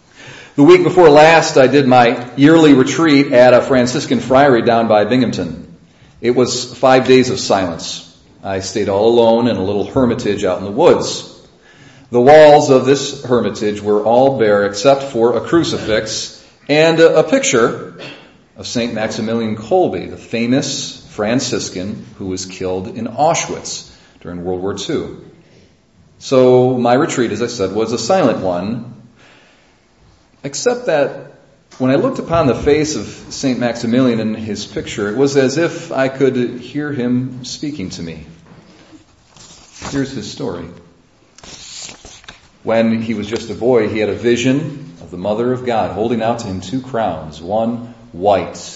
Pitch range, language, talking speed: 95-135 Hz, English, 155 wpm